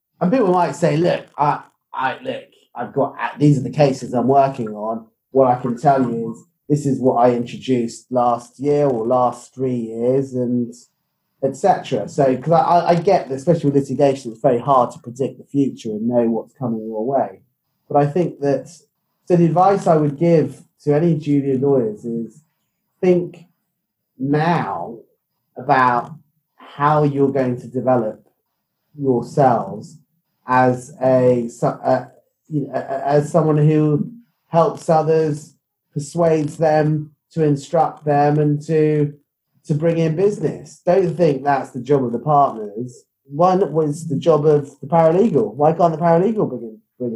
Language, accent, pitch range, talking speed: English, British, 125-160 Hz, 160 wpm